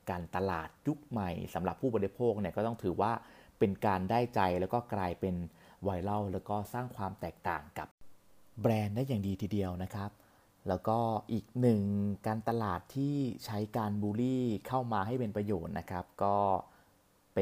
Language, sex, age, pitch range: Thai, male, 30-49, 90-115 Hz